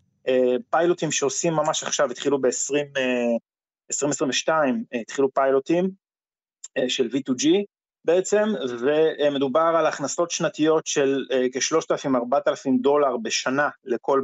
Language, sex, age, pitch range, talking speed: Hebrew, male, 30-49, 125-175 Hz, 90 wpm